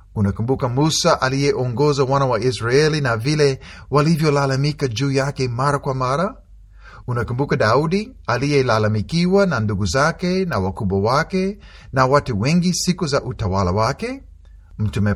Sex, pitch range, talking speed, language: male, 100-165 Hz, 125 wpm, Swahili